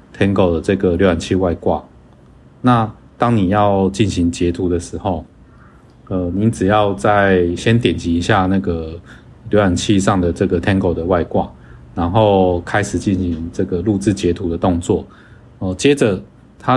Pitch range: 85-105 Hz